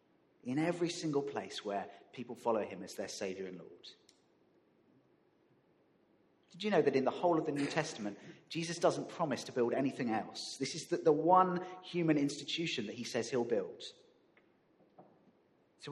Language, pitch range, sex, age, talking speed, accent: English, 120-165 Hz, male, 30-49, 165 wpm, British